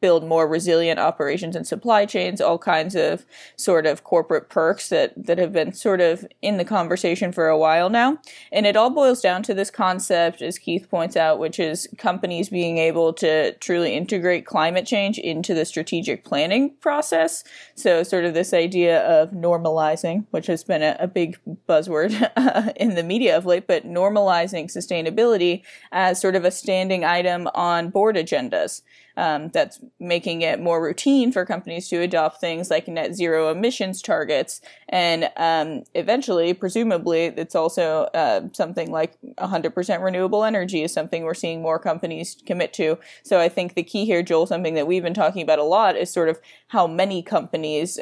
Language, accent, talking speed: English, American, 175 wpm